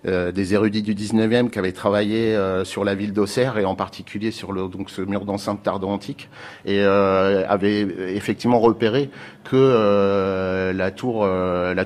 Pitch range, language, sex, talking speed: 95-115 Hz, French, male, 180 wpm